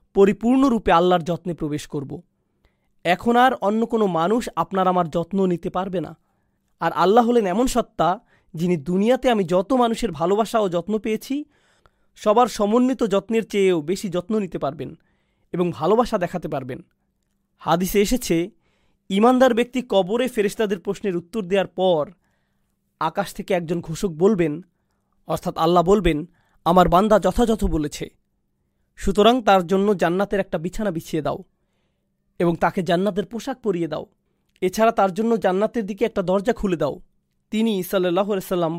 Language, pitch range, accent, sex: Bengali, 170-220 Hz, native, male